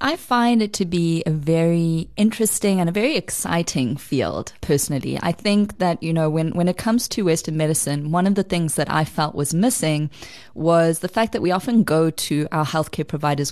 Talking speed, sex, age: 205 wpm, female, 20-39